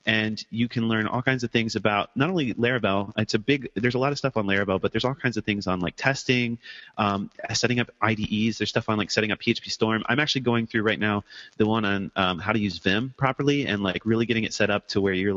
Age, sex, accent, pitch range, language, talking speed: 30-49, male, American, 100-120 Hz, English, 265 wpm